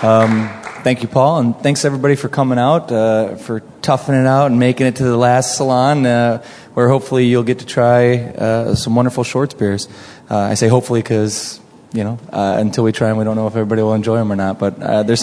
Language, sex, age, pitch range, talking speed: English, male, 20-39, 110-125 Hz, 230 wpm